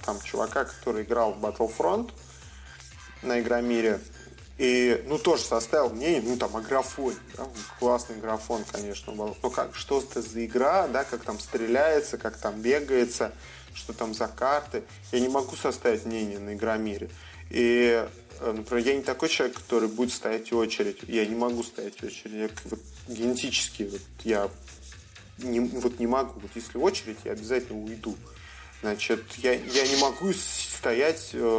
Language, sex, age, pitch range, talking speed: Russian, male, 20-39, 105-120 Hz, 160 wpm